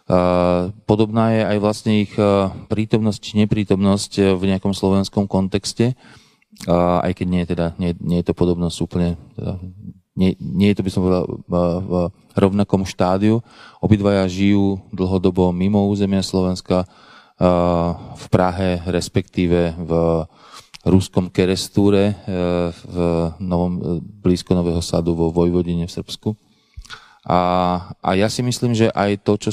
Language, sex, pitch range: Slovak, male, 90-100 Hz